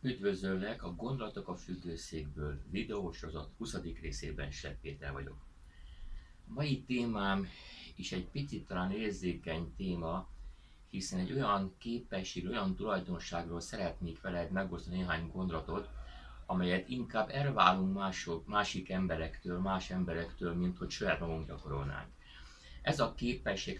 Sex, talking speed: male, 115 wpm